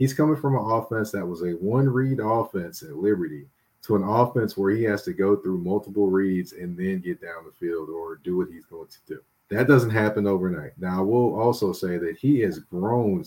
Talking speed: 225 wpm